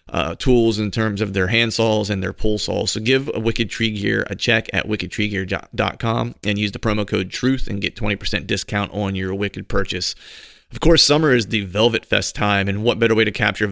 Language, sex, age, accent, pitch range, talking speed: English, male, 30-49, American, 100-115 Hz, 215 wpm